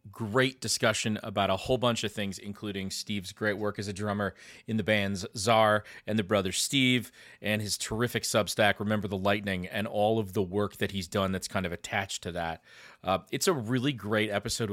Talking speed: 210 wpm